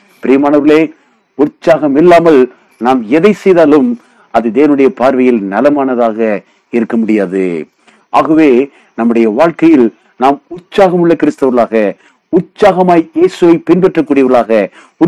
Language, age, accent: Tamil, 50-69, native